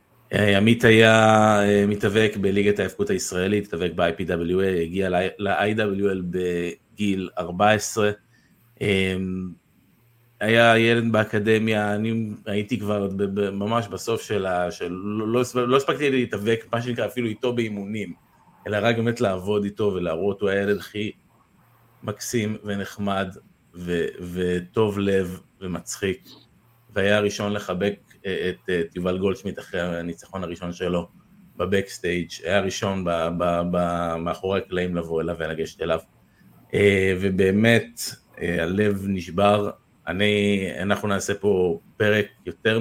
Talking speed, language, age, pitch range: 110 wpm, Hebrew, 30-49, 90-110 Hz